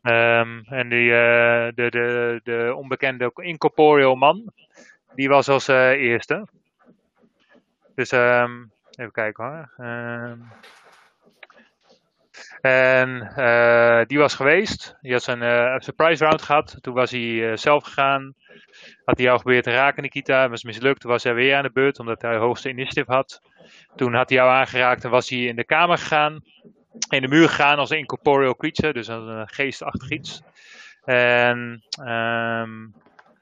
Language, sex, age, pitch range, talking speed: English, male, 20-39, 115-135 Hz, 145 wpm